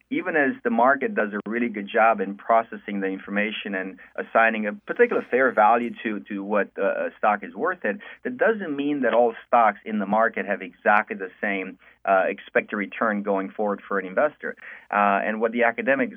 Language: English